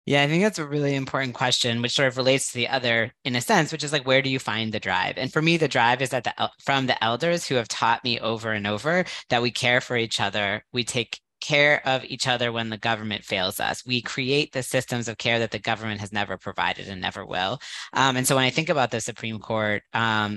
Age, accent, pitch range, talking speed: 20-39, American, 110-135 Hz, 260 wpm